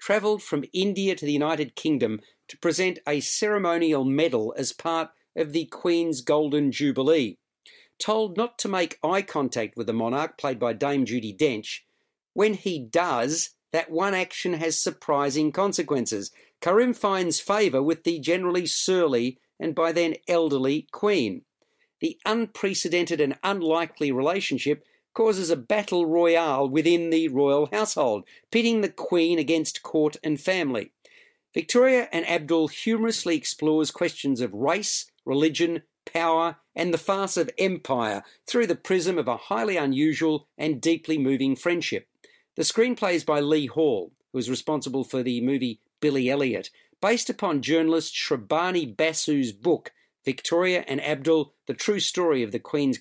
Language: English